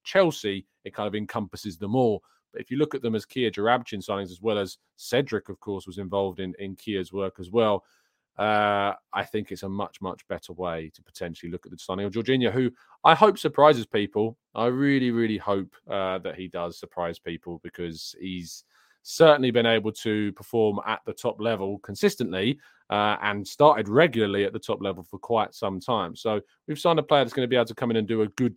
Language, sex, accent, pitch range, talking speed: English, male, British, 100-130 Hz, 220 wpm